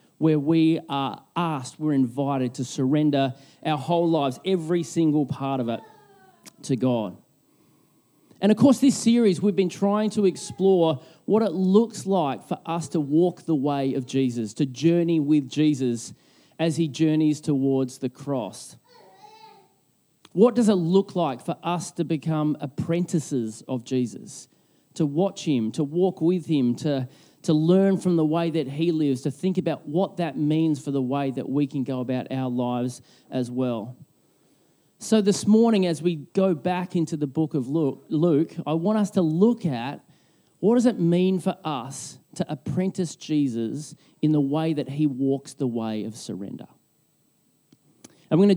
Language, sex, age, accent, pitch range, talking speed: English, male, 30-49, Australian, 135-180 Hz, 170 wpm